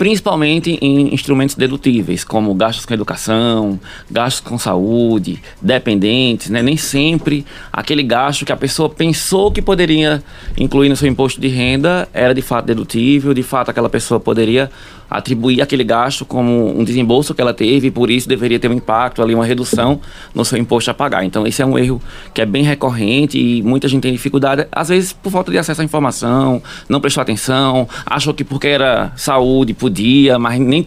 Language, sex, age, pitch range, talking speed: Portuguese, male, 20-39, 120-145 Hz, 185 wpm